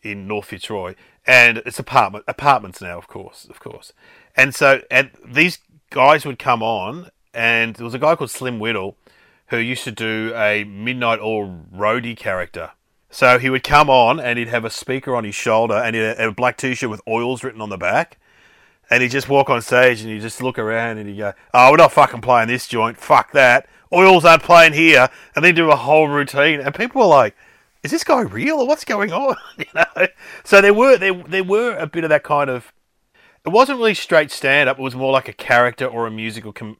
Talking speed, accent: 220 wpm, Australian